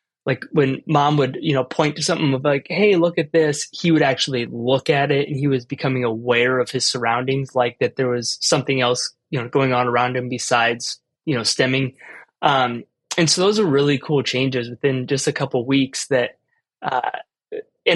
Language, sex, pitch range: English, male, 125-145 Hz